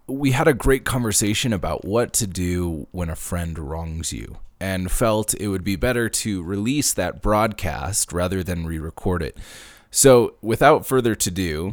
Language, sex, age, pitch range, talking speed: English, male, 20-39, 80-95 Hz, 165 wpm